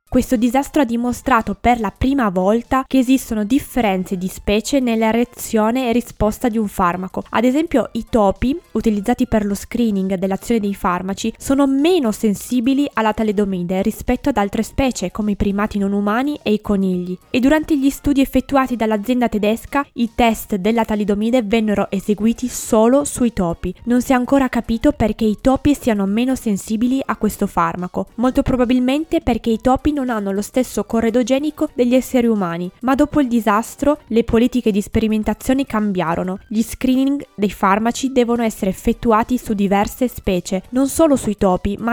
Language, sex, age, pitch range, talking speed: Italian, female, 20-39, 205-255 Hz, 165 wpm